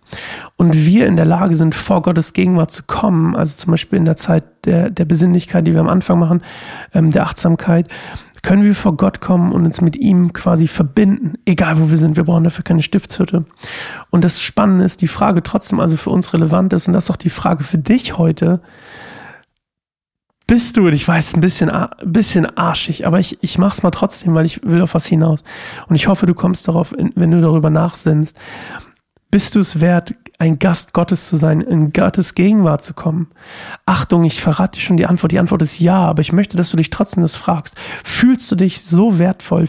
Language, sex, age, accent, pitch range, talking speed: German, male, 40-59, German, 165-185 Hz, 215 wpm